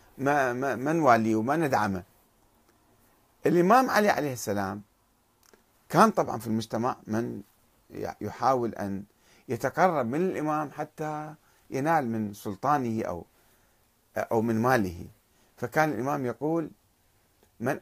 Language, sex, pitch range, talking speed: Arabic, male, 110-155 Hz, 105 wpm